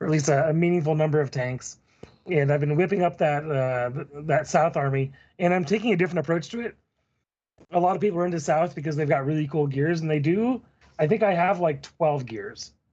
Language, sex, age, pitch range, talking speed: English, male, 30-49, 130-160 Hz, 230 wpm